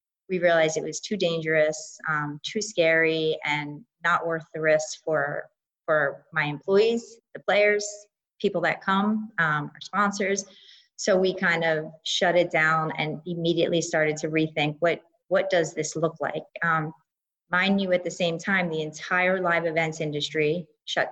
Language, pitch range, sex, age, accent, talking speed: English, 160-195 Hz, female, 30-49, American, 160 wpm